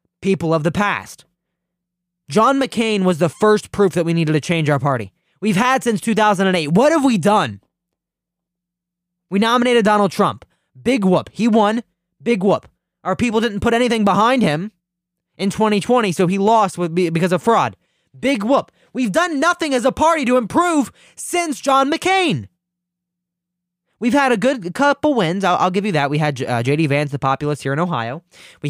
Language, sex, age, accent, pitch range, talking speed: English, male, 20-39, American, 160-215 Hz, 180 wpm